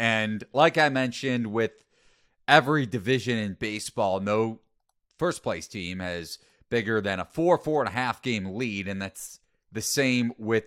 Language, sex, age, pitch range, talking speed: English, male, 30-49, 100-125 Hz, 165 wpm